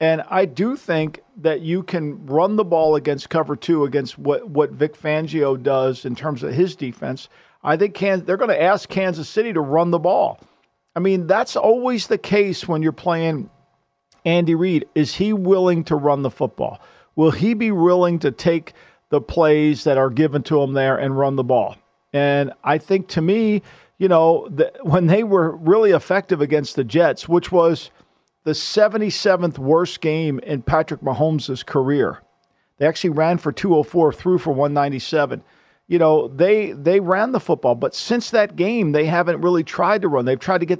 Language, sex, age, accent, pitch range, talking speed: English, male, 50-69, American, 150-185 Hz, 190 wpm